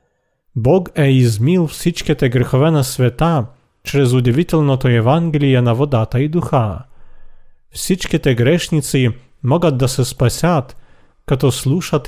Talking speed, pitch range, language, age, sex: 110 wpm, 125-160 Hz, Bulgarian, 40-59, male